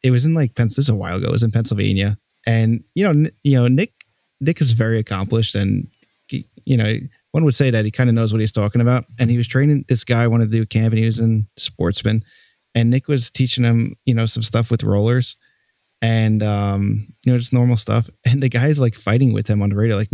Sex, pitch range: male, 110-130 Hz